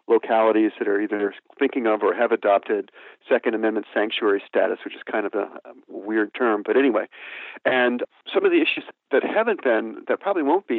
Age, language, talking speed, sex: 50-69, English, 190 wpm, male